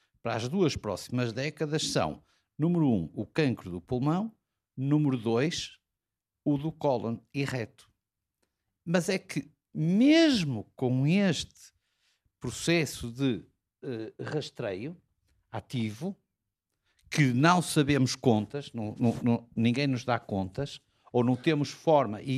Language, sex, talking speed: Portuguese, male, 115 wpm